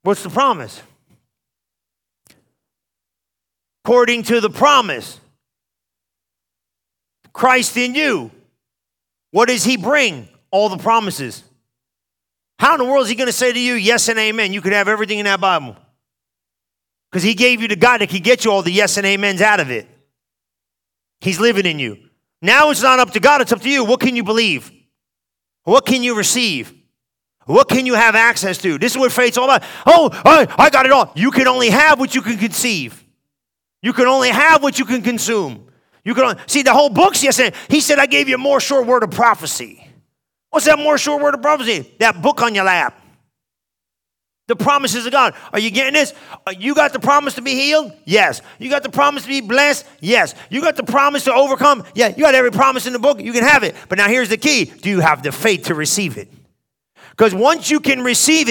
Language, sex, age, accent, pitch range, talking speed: English, male, 40-59, American, 190-275 Hz, 210 wpm